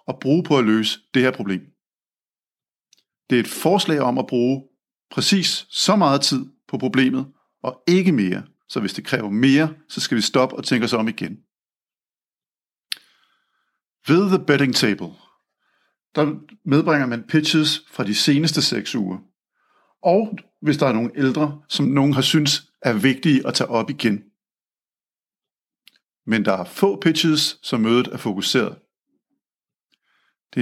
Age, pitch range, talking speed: 50-69, 115-150 Hz, 150 wpm